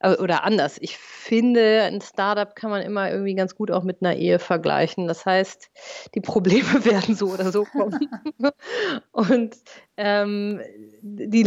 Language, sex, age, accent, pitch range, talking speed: German, female, 30-49, German, 190-220 Hz, 150 wpm